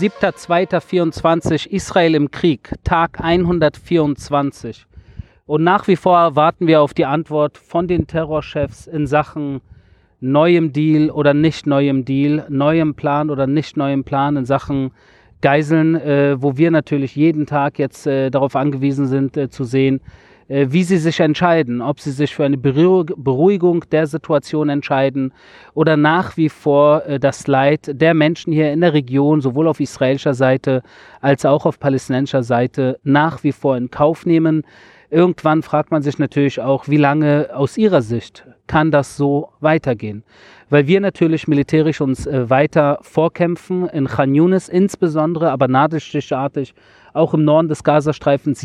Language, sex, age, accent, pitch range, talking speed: German, male, 40-59, German, 140-160 Hz, 150 wpm